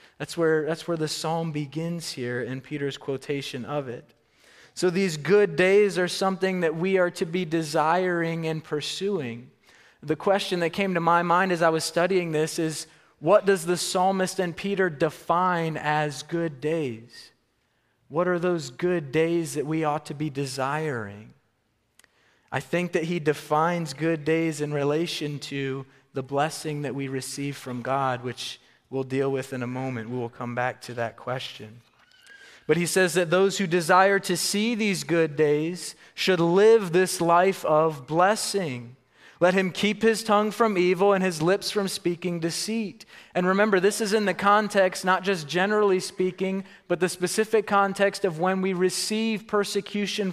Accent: American